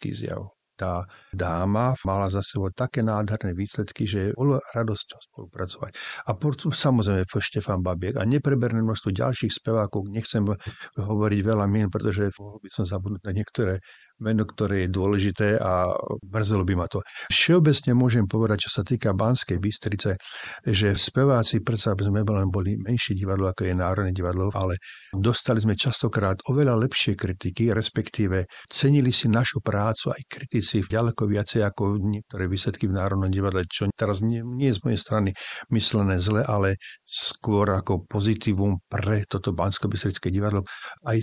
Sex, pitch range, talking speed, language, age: male, 95-115 Hz, 150 wpm, Slovak, 50-69